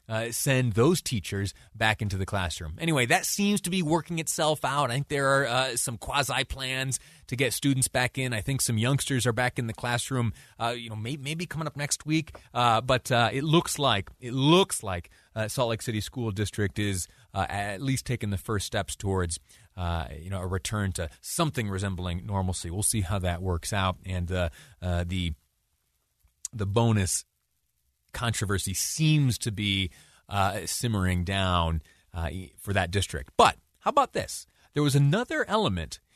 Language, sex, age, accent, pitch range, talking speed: English, male, 30-49, American, 95-135 Hz, 185 wpm